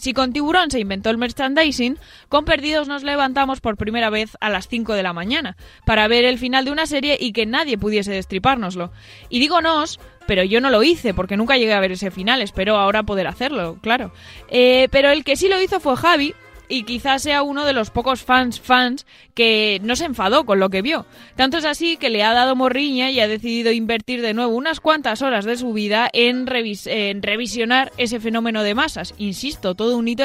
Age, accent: 20-39, Spanish